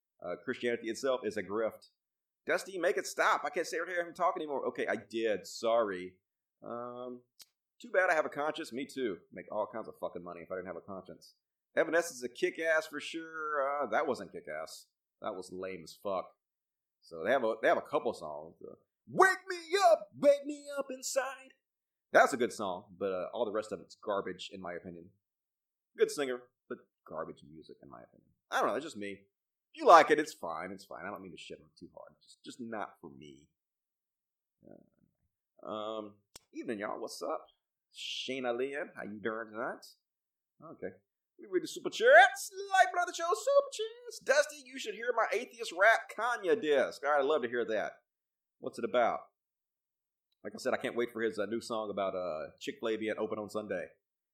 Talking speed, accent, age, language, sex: 205 wpm, American, 30-49, English, male